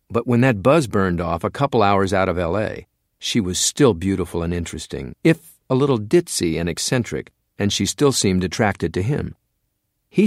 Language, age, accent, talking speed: English, 50-69, American, 185 wpm